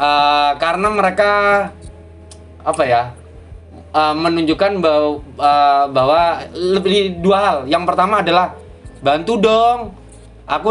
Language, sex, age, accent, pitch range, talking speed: Indonesian, male, 20-39, native, 135-195 Hz, 105 wpm